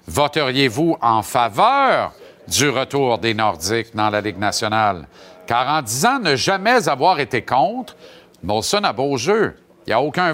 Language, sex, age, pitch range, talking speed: French, male, 50-69, 140-195 Hz, 155 wpm